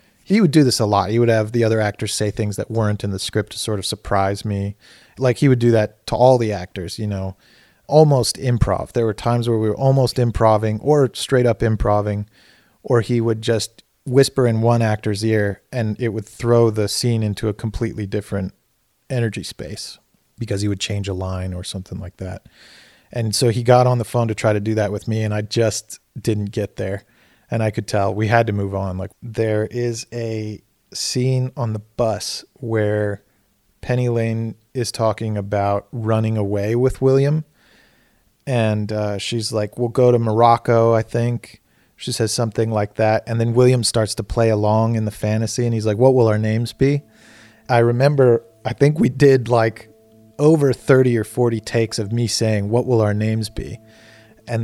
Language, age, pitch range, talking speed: English, 30-49, 105-120 Hz, 200 wpm